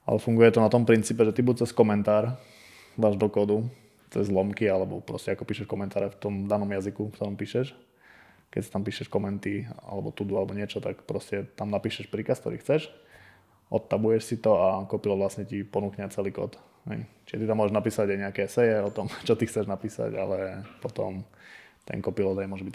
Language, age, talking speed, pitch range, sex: Slovak, 20-39, 195 wpm, 100-110 Hz, male